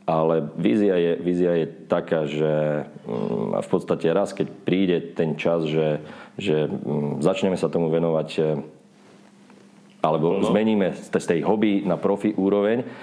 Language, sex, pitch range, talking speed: Slovak, male, 80-90 Hz, 125 wpm